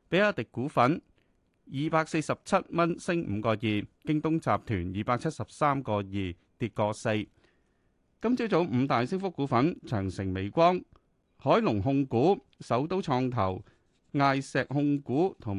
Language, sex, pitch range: Chinese, male, 105-155 Hz